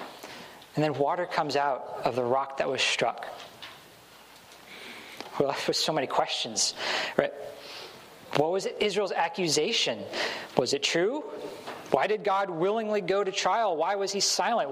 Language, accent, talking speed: English, American, 145 wpm